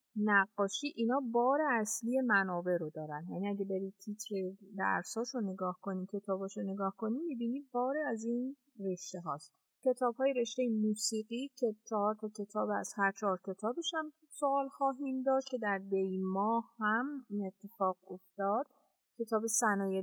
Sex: female